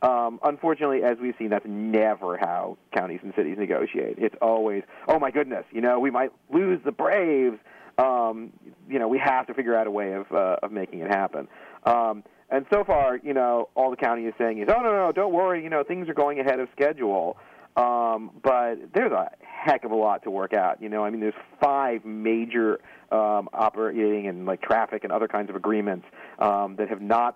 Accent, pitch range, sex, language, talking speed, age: American, 105-140 Hz, male, English, 215 wpm, 40-59